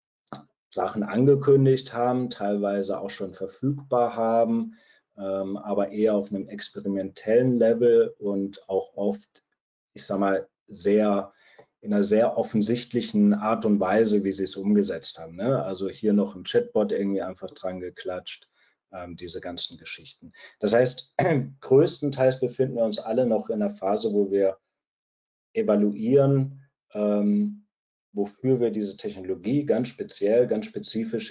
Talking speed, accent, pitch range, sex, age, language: 130 wpm, German, 100-125 Hz, male, 30-49, German